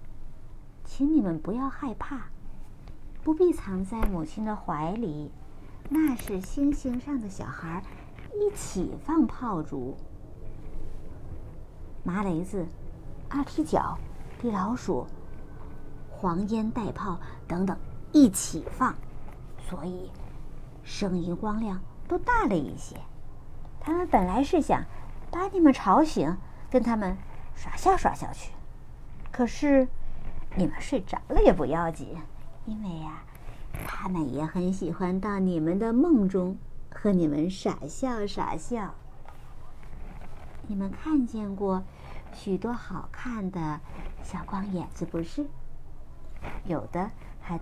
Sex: male